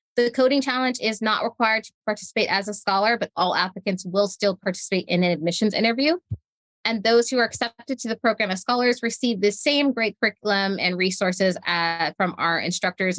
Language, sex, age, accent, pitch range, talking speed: English, female, 20-39, American, 180-230 Hz, 190 wpm